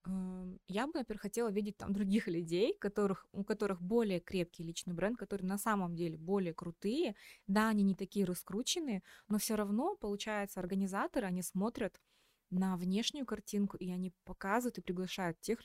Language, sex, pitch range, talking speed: Russian, female, 175-210 Hz, 155 wpm